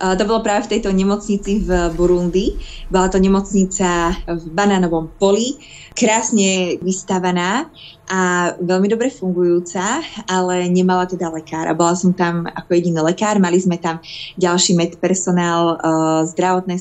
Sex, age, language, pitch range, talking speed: female, 20-39, Slovak, 175-190 Hz, 135 wpm